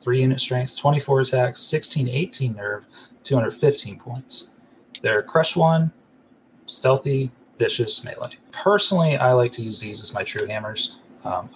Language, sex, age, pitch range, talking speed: English, male, 30-49, 105-130 Hz, 140 wpm